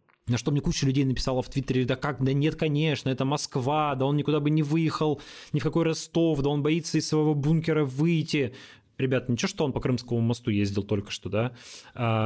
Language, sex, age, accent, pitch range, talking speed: Russian, male, 20-39, native, 115-145 Hz, 215 wpm